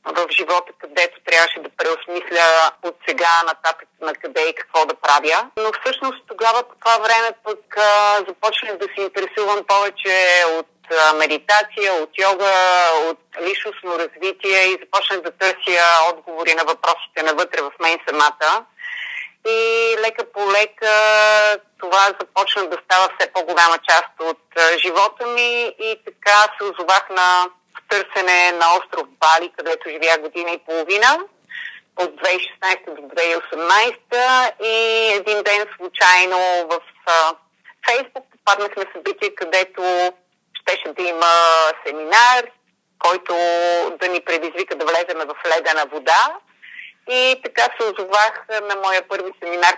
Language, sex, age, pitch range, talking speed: Bulgarian, female, 30-49, 170-215 Hz, 130 wpm